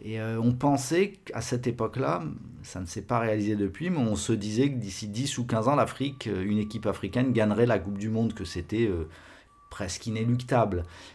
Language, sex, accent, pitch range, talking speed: French, male, French, 100-125 Hz, 200 wpm